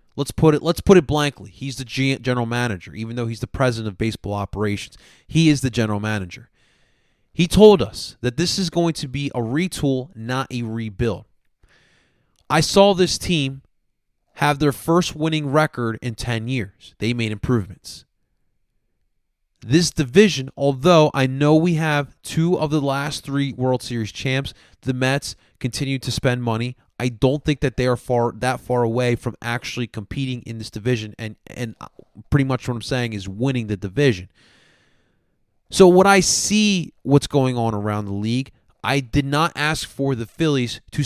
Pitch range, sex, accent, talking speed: 115-145 Hz, male, American, 175 wpm